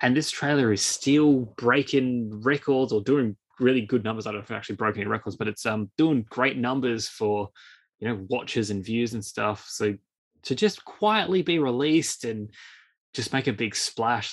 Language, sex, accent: English, male, Australian